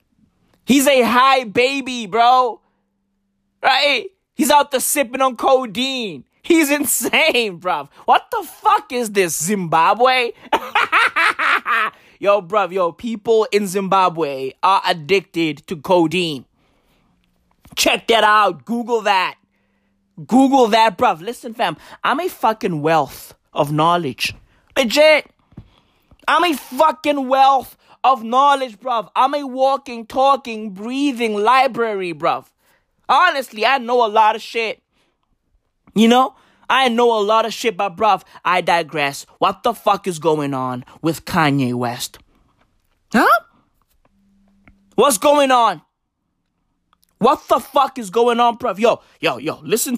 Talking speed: 125 wpm